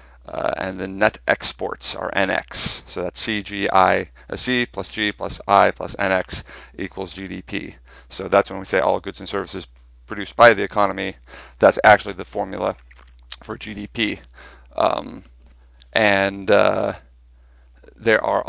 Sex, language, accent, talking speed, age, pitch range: male, English, American, 145 wpm, 40-59, 70-110 Hz